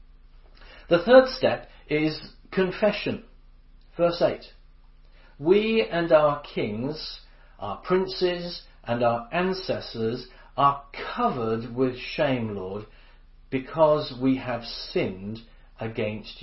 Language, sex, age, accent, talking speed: English, male, 40-59, British, 95 wpm